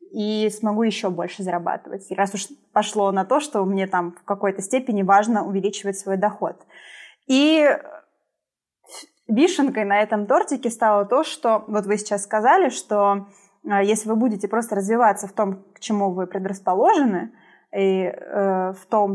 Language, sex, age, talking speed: Russian, female, 20-39, 145 wpm